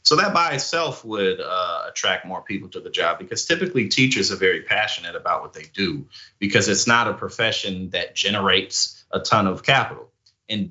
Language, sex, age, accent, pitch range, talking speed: English, male, 30-49, American, 100-130 Hz, 190 wpm